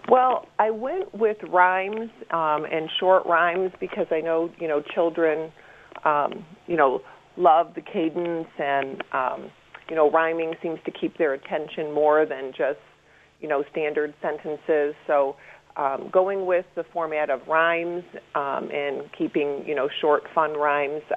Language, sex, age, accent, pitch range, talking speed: English, female, 40-59, American, 145-180 Hz, 155 wpm